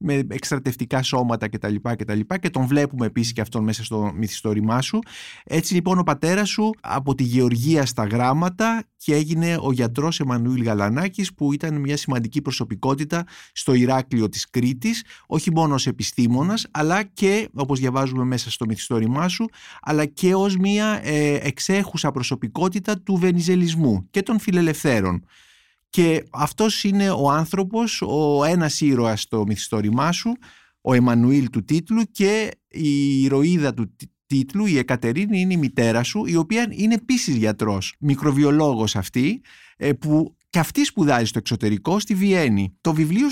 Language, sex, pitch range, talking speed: Greek, male, 125-185 Hz, 155 wpm